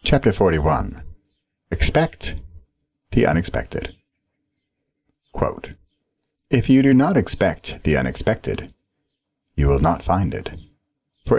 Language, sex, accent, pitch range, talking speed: English, male, American, 75-100 Hz, 95 wpm